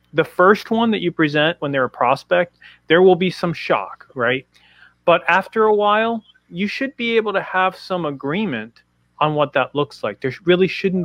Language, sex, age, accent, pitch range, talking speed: English, male, 30-49, American, 130-175 Hz, 195 wpm